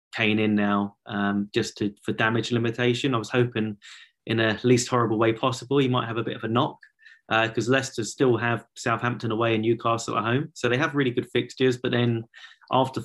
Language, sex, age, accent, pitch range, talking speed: English, male, 20-39, British, 110-125 Hz, 205 wpm